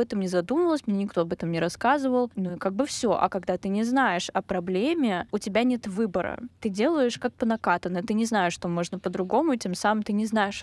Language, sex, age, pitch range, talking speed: Russian, female, 10-29, 190-230 Hz, 230 wpm